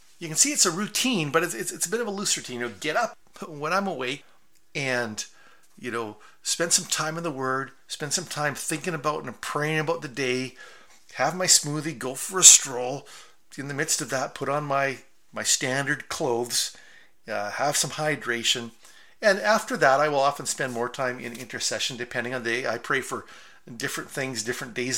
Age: 50-69